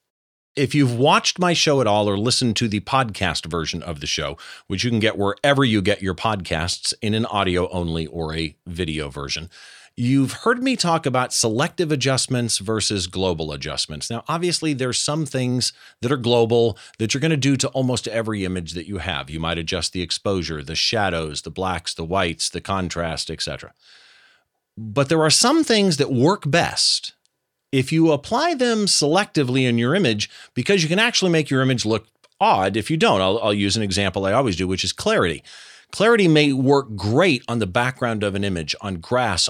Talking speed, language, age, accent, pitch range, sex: 195 wpm, English, 40-59, American, 95-140 Hz, male